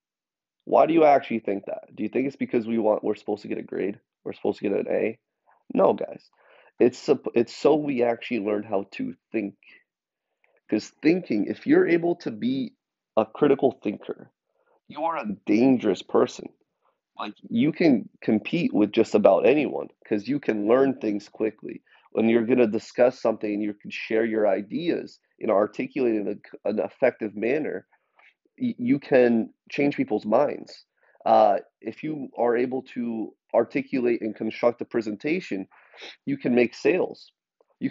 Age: 30-49